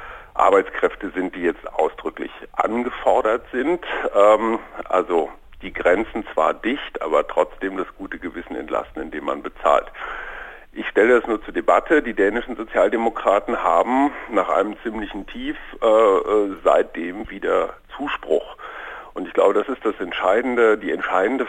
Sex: male